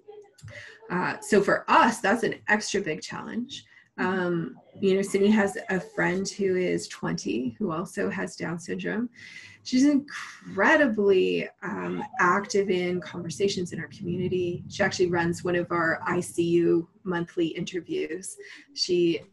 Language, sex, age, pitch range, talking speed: English, female, 20-39, 180-225 Hz, 135 wpm